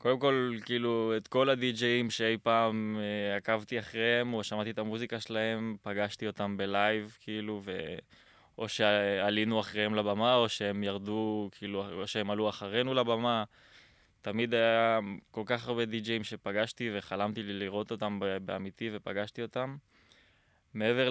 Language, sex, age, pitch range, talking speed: Hebrew, male, 20-39, 100-120 Hz, 140 wpm